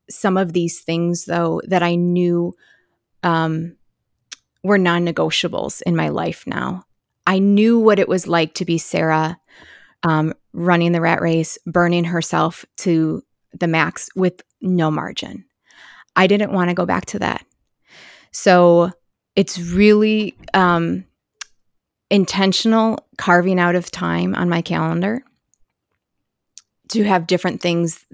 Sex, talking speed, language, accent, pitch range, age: female, 130 wpm, English, American, 160-180 Hz, 20-39